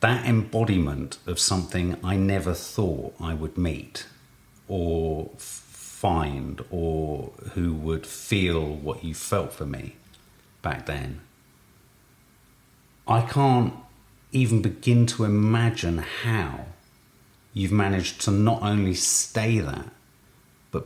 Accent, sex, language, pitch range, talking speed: British, male, English, 95-130 Hz, 110 wpm